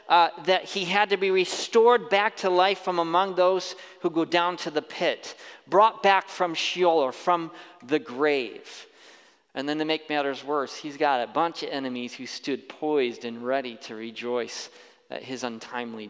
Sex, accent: male, American